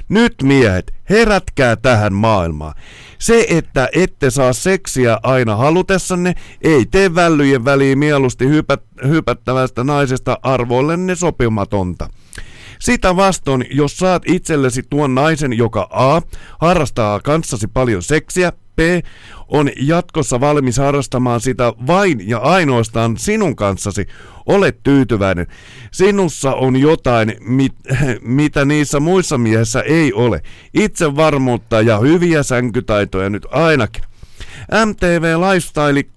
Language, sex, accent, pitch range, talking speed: Finnish, male, native, 115-160 Hz, 105 wpm